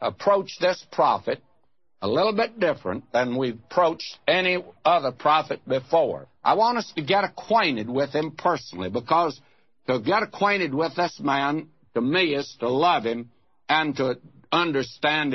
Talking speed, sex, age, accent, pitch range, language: 155 wpm, male, 60-79, American, 125-180 Hz, English